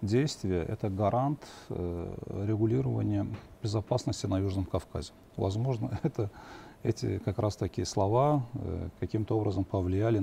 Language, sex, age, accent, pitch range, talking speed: Russian, male, 40-59, native, 95-120 Hz, 105 wpm